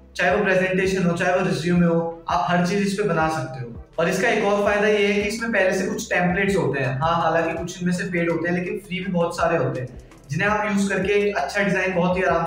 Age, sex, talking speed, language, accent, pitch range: 20-39, male, 145 wpm, Hindi, native, 170-200 Hz